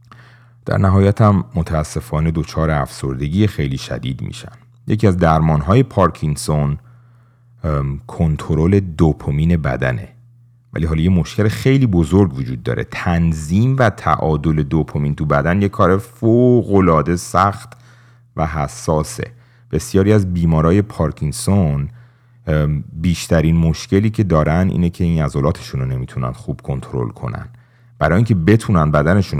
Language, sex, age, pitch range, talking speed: Persian, male, 30-49, 75-115 Hz, 120 wpm